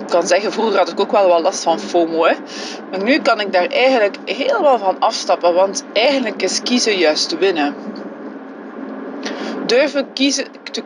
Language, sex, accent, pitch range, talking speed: Dutch, female, Dutch, 195-255 Hz, 165 wpm